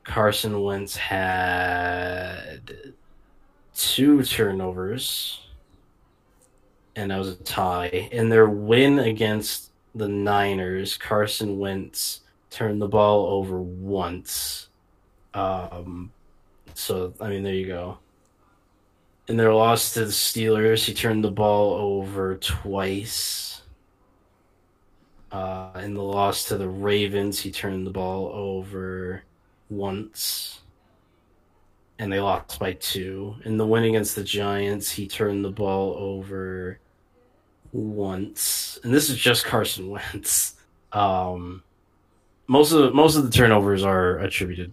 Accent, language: American, English